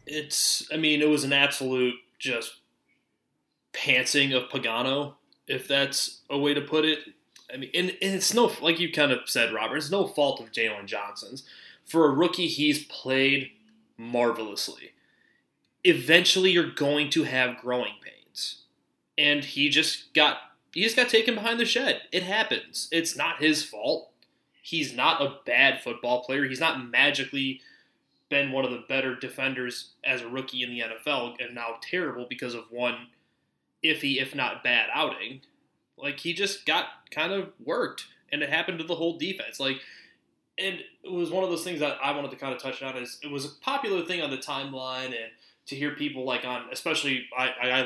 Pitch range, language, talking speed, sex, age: 130-160 Hz, English, 185 wpm, male, 20-39